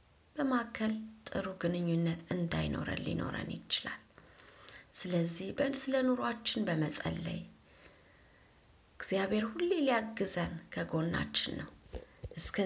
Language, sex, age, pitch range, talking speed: Amharic, female, 30-49, 160-225 Hz, 80 wpm